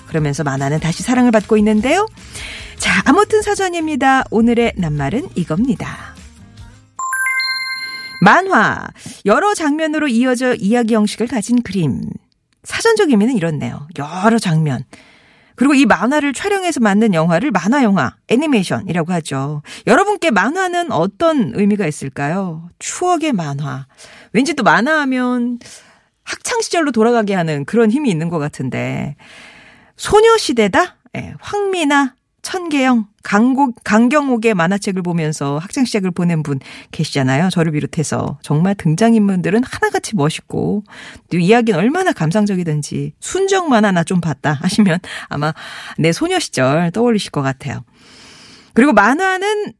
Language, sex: Korean, female